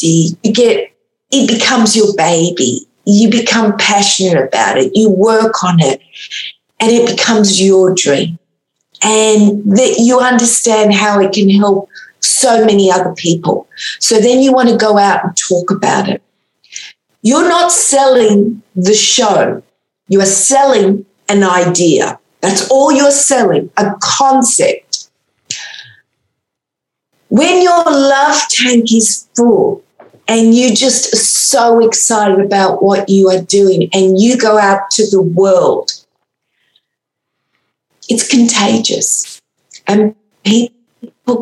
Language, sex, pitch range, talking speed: English, female, 195-245 Hz, 125 wpm